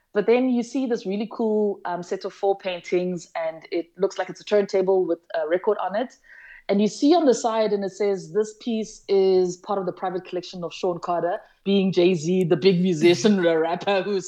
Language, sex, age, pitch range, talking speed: English, female, 20-39, 170-210 Hz, 215 wpm